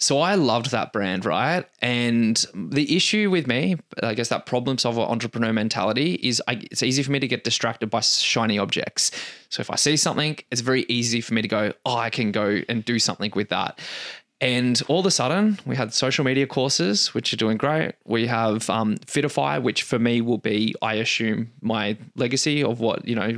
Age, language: 20-39, English